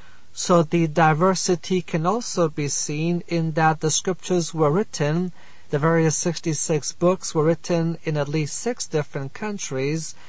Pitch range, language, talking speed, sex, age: 145-180 Hz, English, 145 wpm, male, 50-69